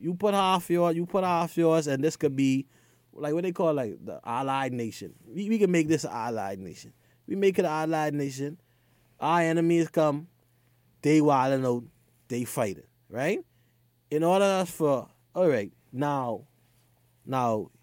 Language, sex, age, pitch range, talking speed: English, male, 20-39, 115-145 Hz, 170 wpm